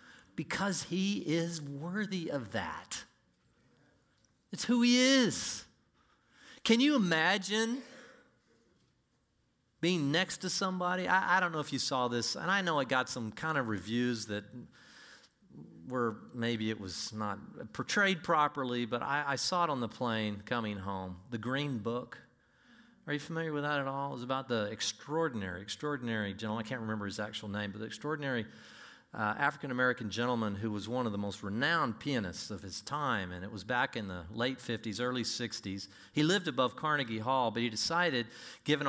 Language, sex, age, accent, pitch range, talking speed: English, male, 40-59, American, 105-155 Hz, 170 wpm